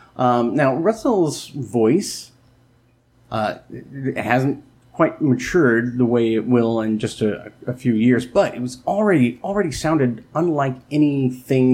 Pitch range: 115-135 Hz